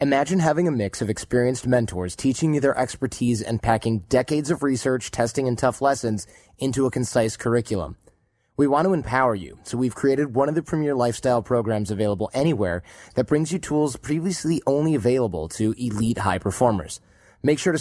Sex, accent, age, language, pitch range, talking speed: male, American, 30-49, English, 110-135 Hz, 180 wpm